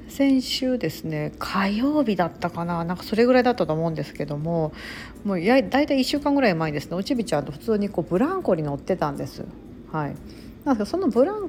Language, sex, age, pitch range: Japanese, female, 40-59, 165-260 Hz